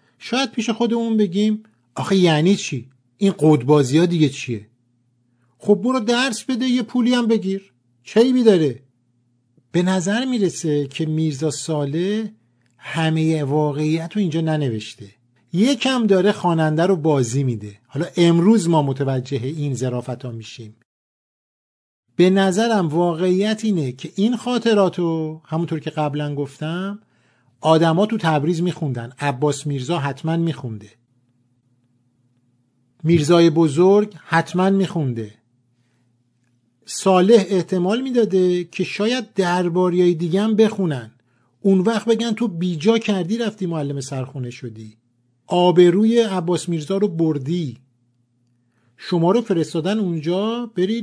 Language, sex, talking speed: Persian, male, 115 wpm